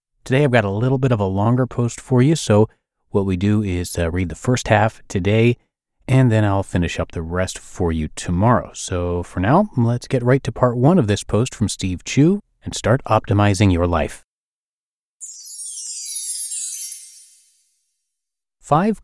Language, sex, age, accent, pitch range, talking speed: English, male, 30-49, American, 90-120 Hz, 170 wpm